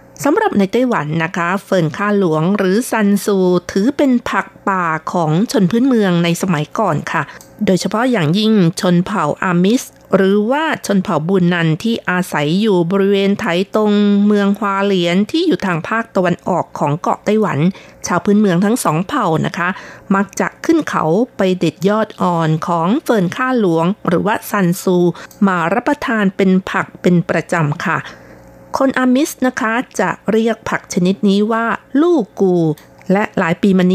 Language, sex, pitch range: Thai, female, 175-230 Hz